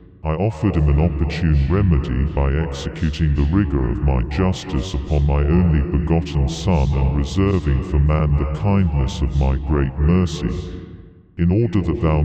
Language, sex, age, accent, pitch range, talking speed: English, female, 40-59, British, 75-90 Hz, 155 wpm